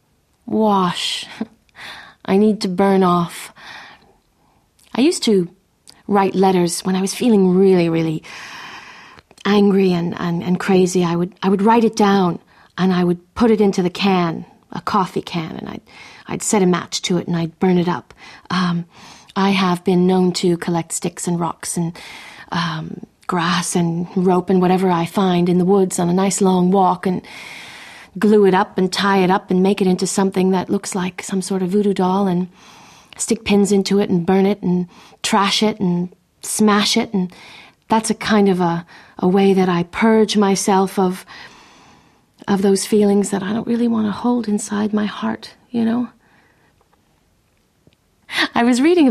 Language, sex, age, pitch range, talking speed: English, female, 40-59, 180-210 Hz, 180 wpm